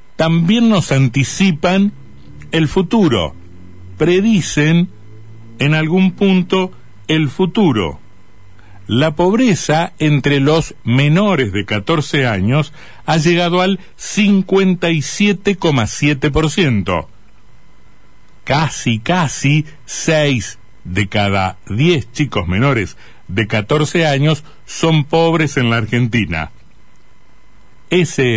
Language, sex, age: Spanish, male, 60-79